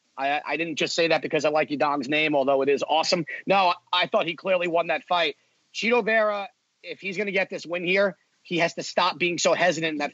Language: English